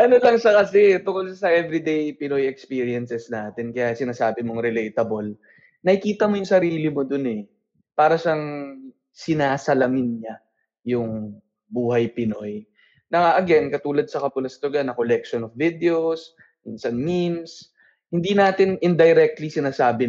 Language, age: Filipino, 20-39